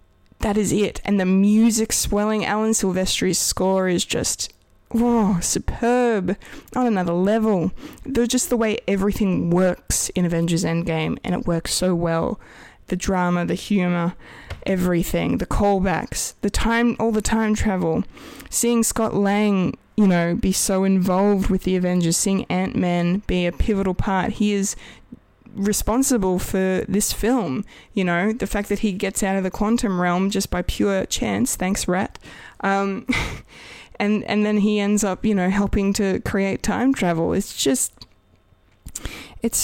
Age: 20-39